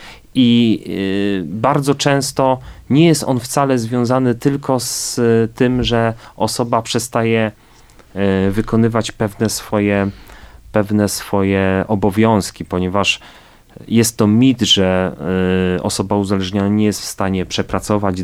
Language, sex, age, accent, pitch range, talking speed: Polish, male, 30-49, native, 100-120 Hz, 100 wpm